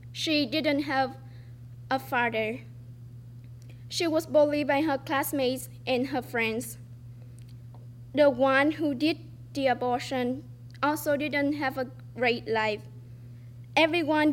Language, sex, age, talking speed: English, female, 10-29, 115 wpm